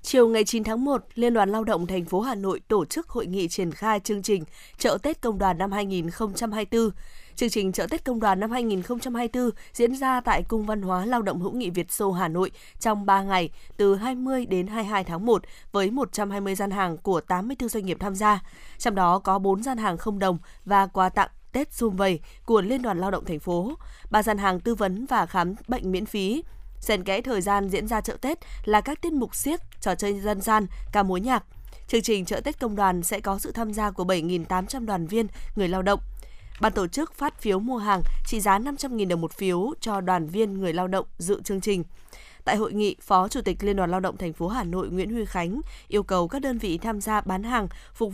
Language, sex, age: Vietnamese, female, 20-39